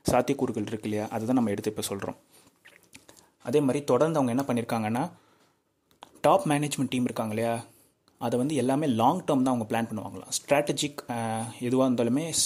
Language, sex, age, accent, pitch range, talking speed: Tamil, male, 30-49, native, 110-140 Hz, 150 wpm